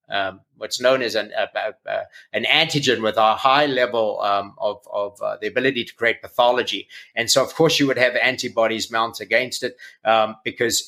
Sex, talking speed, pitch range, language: male, 195 wpm, 110-125 Hz, English